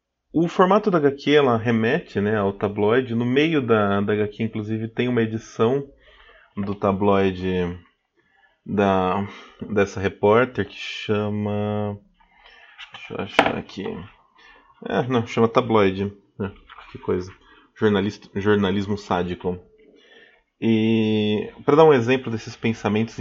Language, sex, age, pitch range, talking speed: Portuguese, male, 20-39, 100-125 Hz, 110 wpm